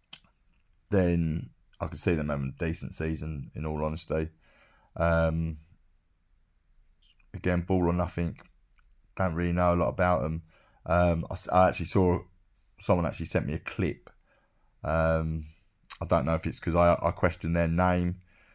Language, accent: English, British